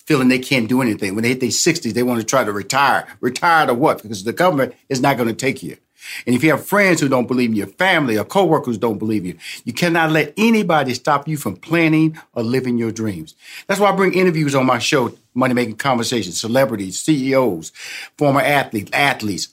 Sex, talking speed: male, 220 wpm